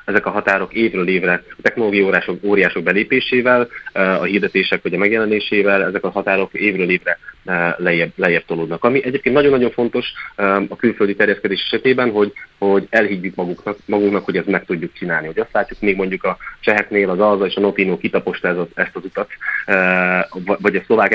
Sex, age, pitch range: male, 30-49, 90-105 Hz